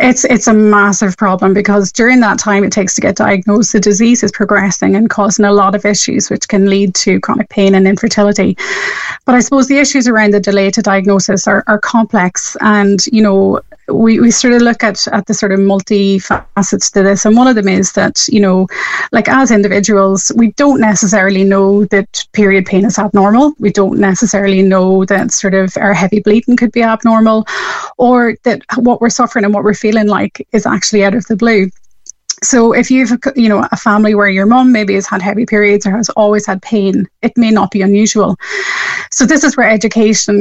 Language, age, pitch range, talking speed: English, 30-49, 200-230 Hz, 210 wpm